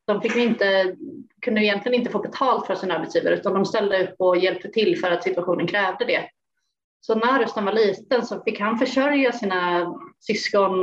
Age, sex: 30-49, female